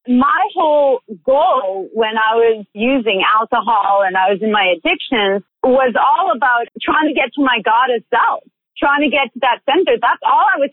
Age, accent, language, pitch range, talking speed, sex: 40-59, American, English, 215-290 Hz, 190 wpm, female